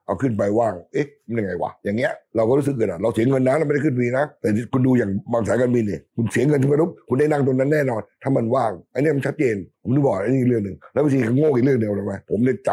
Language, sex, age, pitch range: Thai, male, 60-79, 110-150 Hz